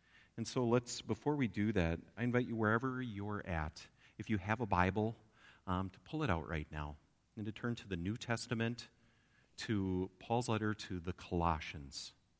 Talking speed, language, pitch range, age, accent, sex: 185 wpm, English, 90-120 Hz, 40-59, American, male